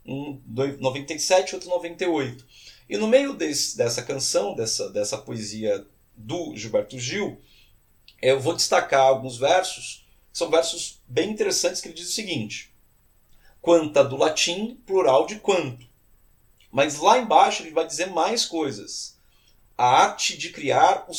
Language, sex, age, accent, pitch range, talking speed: Portuguese, male, 40-59, Brazilian, 130-215 Hz, 140 wpm